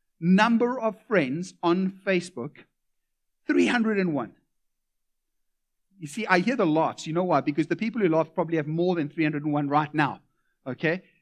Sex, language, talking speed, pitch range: male, English, 150 wpm, 160-205 Hz